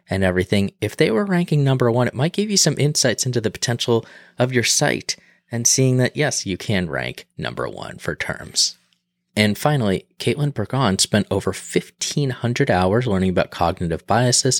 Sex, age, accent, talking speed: male, 20-39, American, 175 wpm